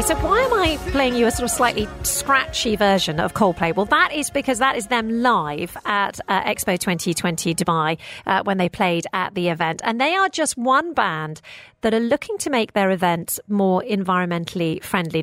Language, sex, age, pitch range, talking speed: English, female, 40-59, 180-245 Hz, 195 wpm